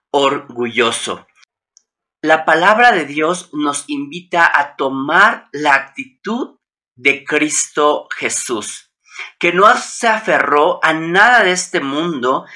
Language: Spanish